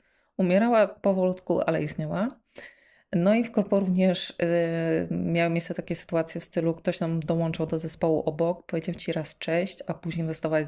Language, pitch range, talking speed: Polish, 155-180 Hz, 165 wpm